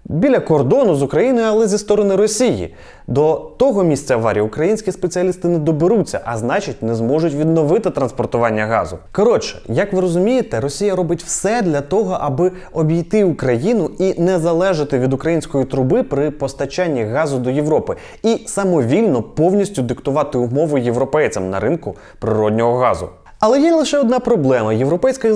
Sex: male